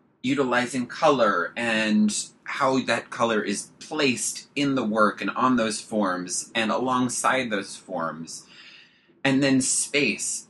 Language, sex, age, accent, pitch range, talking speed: English, male, 30-49, American, 105-140 Hz, 125 wpm